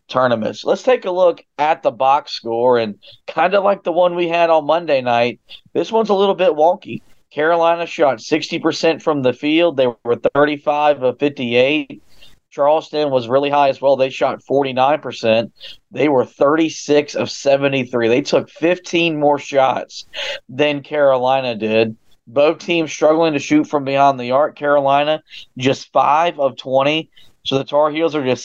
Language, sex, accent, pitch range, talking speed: English, male, American, 130-160 Hz, 165 wpm